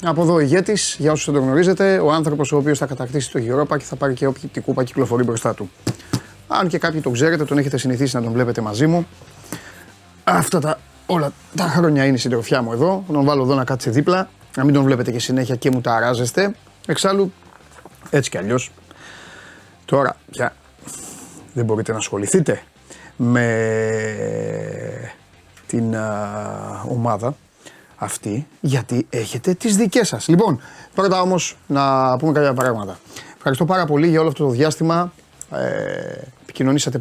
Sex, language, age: male, Greek, 30-49